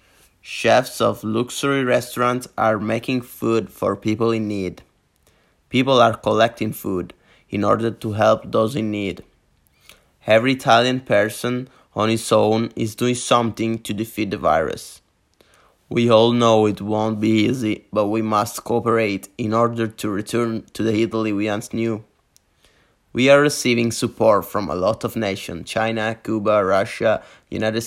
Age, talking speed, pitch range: 20-39, 150 wpm, 110-120 Hz